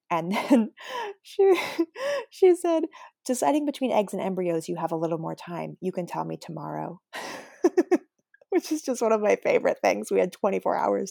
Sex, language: female, English